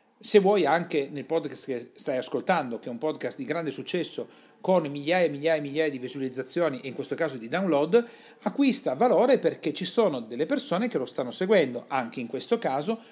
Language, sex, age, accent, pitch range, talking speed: Italian, male, 40-59, native, 140-205 Hz, 200 wpm